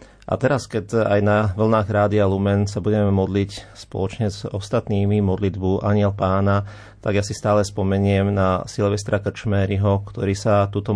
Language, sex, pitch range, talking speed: Slovak, male, 95-105 Hz, 155 wpm